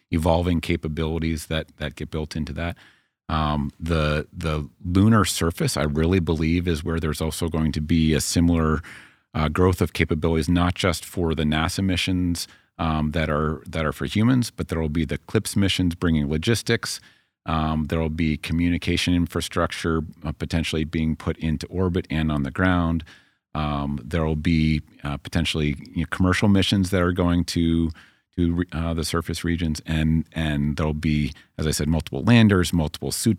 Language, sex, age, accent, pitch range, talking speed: English, male, 40-59, American, 80-90 Hz, 175 wpm